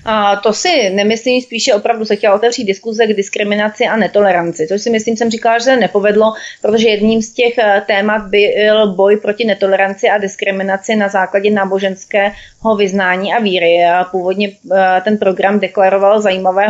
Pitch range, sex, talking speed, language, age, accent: 195-220 Hz, female, 155 wpm, Czech, 30-49, native